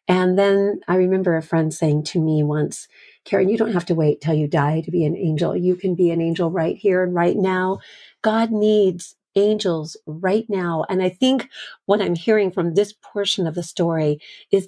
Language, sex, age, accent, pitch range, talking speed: English, female, 40-59, American, 170-200 Hz, 210 wpm